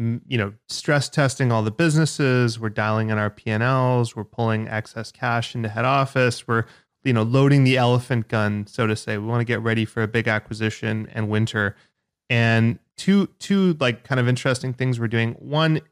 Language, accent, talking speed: English, American, 190 wpm